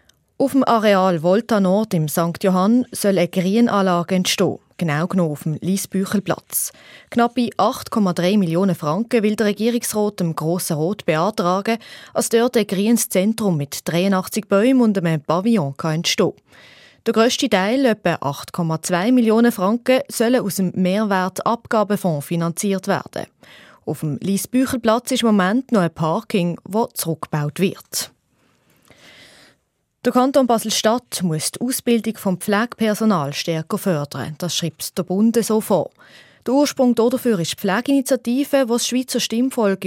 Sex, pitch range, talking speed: female, 175-235 Hz, 140 wpm